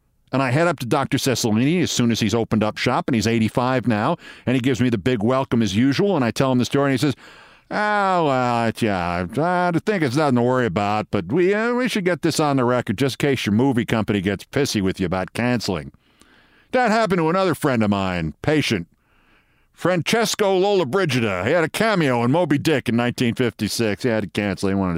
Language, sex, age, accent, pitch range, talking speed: English, male, 50-69, American, 105-150 Hz, 225 wpm